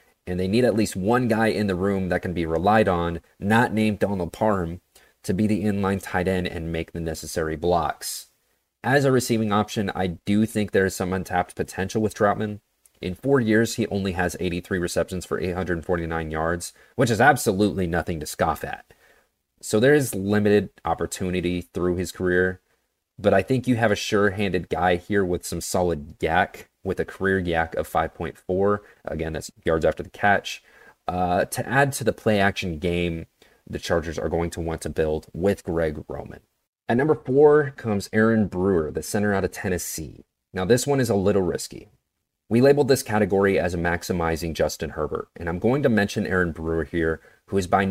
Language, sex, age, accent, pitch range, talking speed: English, male, 30-49, American, 85-110 Hz, 190 wpm